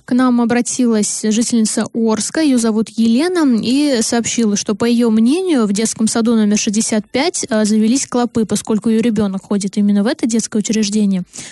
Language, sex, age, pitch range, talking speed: Russian, female, 20-39, 220-255 Hz, 155 wpm